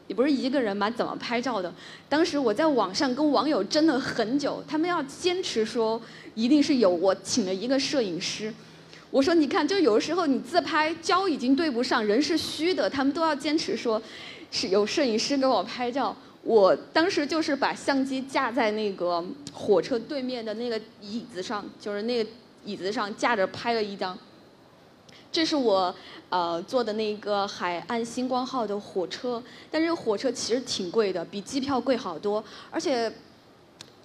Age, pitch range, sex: 20-39, 210-300 Hz, female